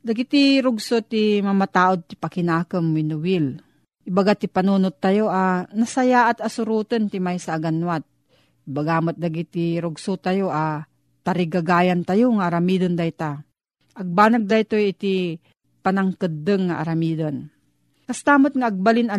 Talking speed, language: 120 wpm, Filipino